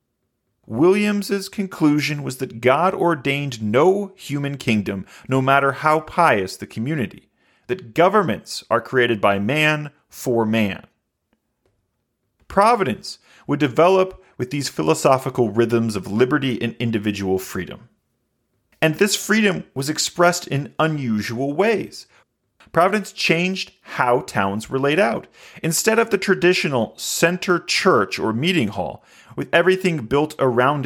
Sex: male